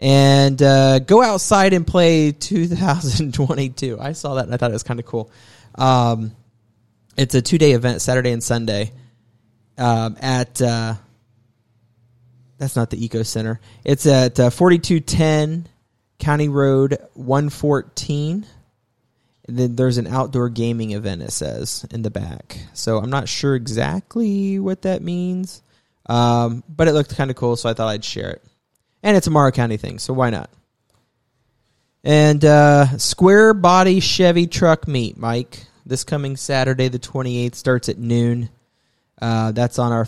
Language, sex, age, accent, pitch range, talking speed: English, male, 20-39, American, 115-145 Hz, 160 wpm